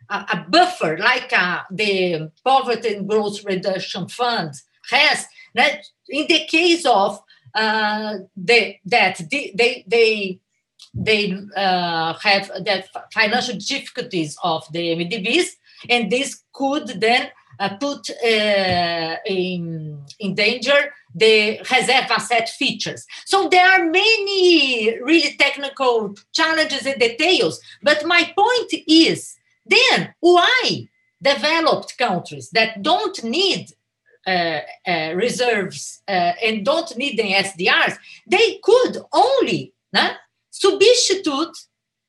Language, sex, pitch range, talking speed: English, female, 195-315 Hz, 110 wpm